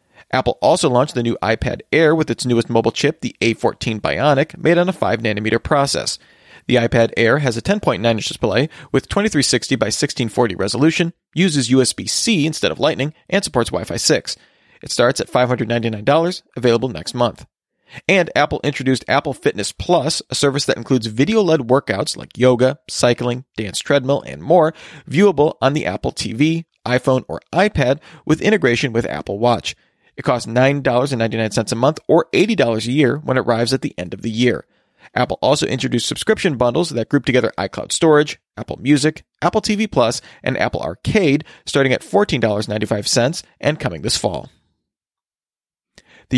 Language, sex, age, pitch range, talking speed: English, male, 40-59, 120-155 Hz, 160 wpm